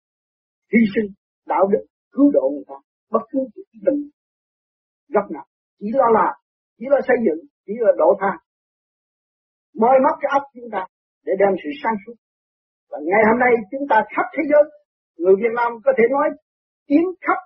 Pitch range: 225-295 Hz